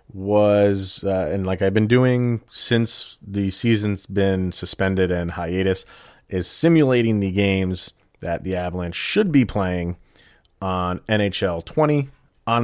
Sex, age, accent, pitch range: male, 30-49, American, 90-115 Hz